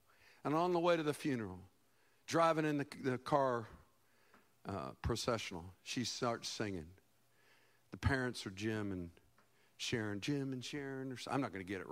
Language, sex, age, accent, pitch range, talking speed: English, male, 50-69, American, 130-180 Hz, 170 wpm